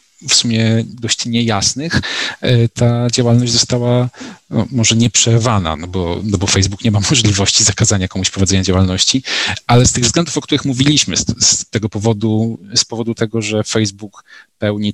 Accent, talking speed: native, 155 wpm